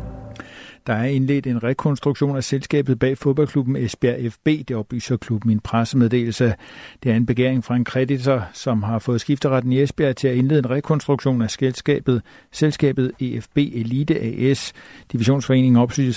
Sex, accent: male, native